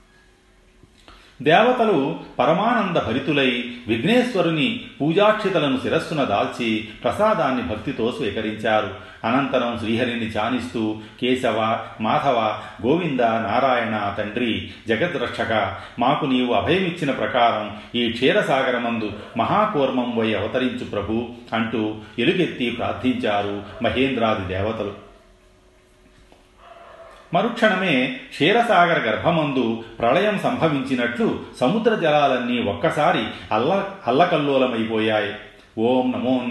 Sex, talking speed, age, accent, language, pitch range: male, 75 wpm, 40-59, native, Telugu, 110-135 Hz